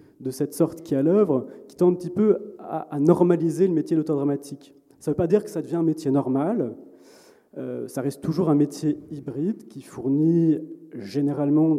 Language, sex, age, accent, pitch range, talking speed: French, male, 30-49, French, 140-165 Hz, 195 wpm